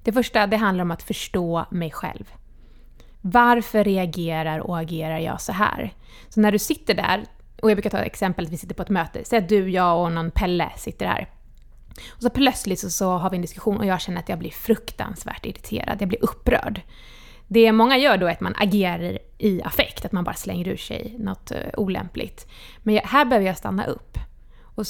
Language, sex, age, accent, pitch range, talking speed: Swedish, female, 20-39, native, 175-225 Hz, 210 wpm